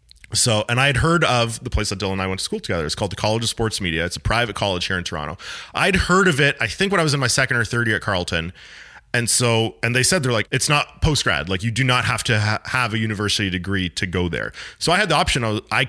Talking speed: 290 wpm